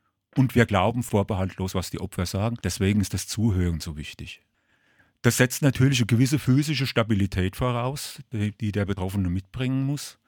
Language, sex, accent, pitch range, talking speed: German, male, German, 95-120 Hz, 160 wpm